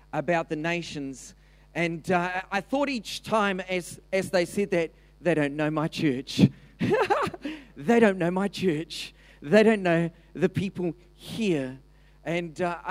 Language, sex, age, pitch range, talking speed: English, male, 40-59, 135-170 Hz, 150 wpm